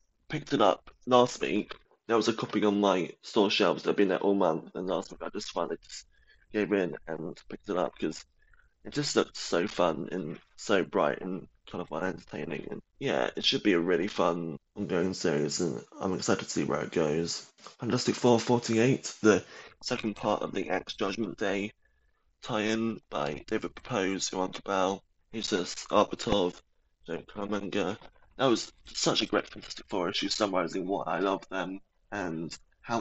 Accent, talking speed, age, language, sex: British, 180 wpm, 20-39, English, male